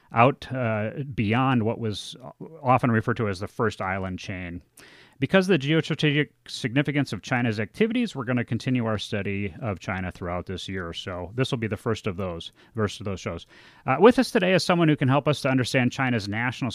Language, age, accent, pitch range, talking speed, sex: English, 30-49, American, 105-140 Hz, 210 wpm, male